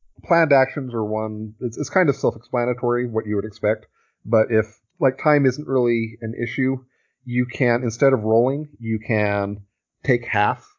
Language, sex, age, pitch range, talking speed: English, male, 40-59, 105-120 Hz, 165 wpm